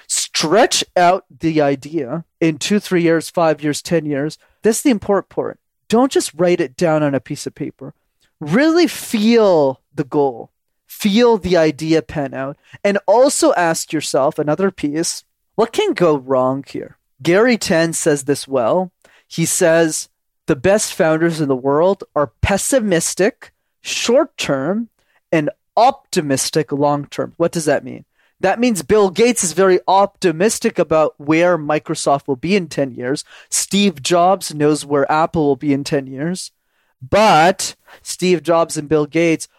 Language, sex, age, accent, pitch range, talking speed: English, male, 20-39, American, 150-190 Hz, 150 wpm